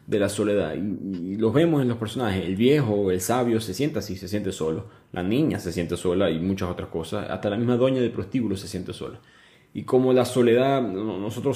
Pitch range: 100-125 Hz